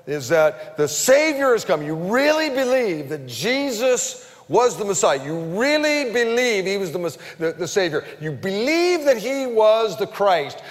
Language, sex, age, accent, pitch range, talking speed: English, male, 50-69, American, 150-210 Hz, 170 wpm